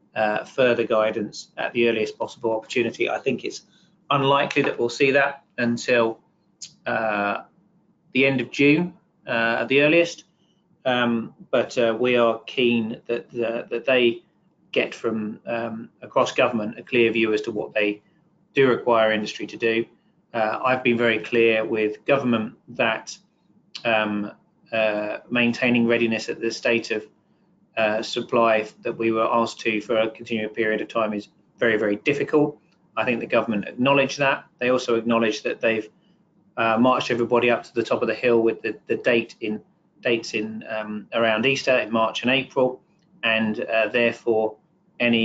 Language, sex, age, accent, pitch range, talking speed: English, male, 30-49, British, 110-125 Hz, 165 wpm